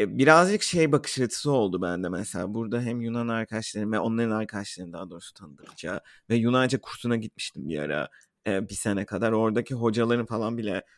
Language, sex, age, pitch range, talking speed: Turkish, male, 30-49, 115-135 Hz, 155 wpm